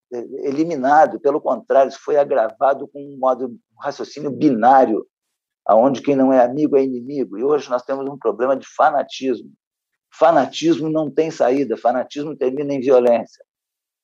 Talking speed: 150 wpm